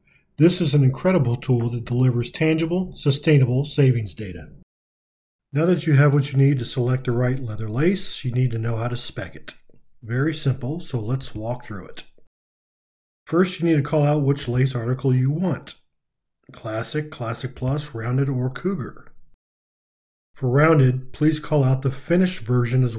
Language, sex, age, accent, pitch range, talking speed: English, male, 40-59, American, 125-150 Hz, 170 wpm